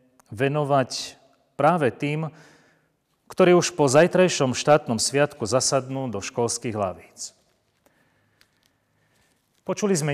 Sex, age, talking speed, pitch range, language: male, 40-59, 90 wpm, 120-150 Hz, Slovak